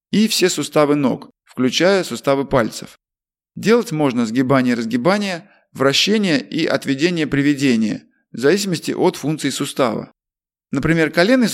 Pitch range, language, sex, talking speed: 135-195 Hz, Russian, male, 105 wpm